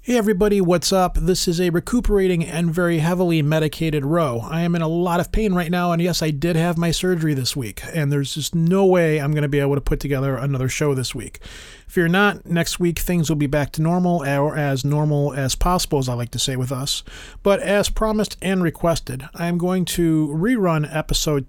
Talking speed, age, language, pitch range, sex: 225 wpm, 40-59, English, 140-175 Hz, male